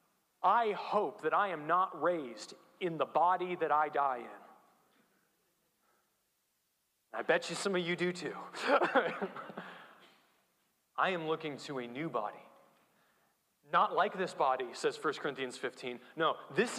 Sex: male